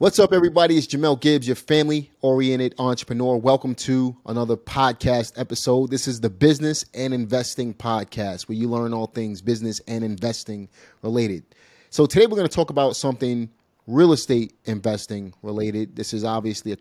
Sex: male